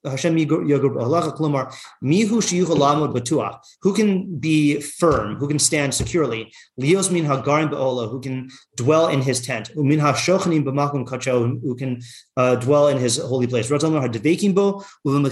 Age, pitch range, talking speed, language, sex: 30-49, 125-160 Hz, 155 wpm, English, male